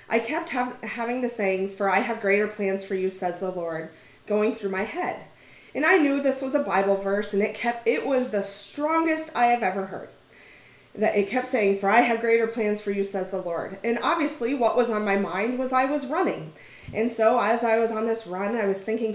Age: 30-49